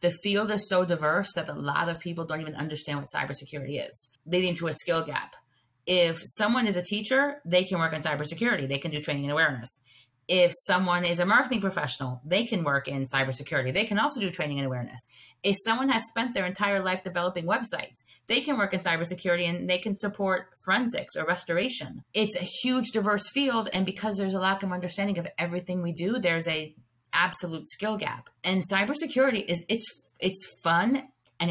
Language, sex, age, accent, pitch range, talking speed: English, female, 30-49, American, 160-210 Hz, 200 wpm